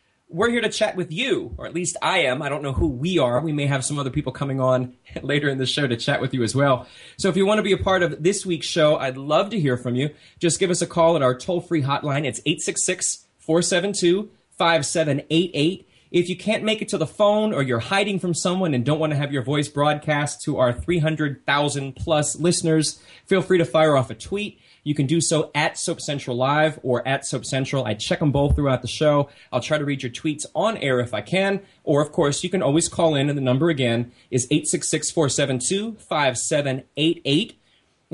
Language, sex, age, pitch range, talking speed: English, male, 20-39, 140-180 Hz, 225 wpm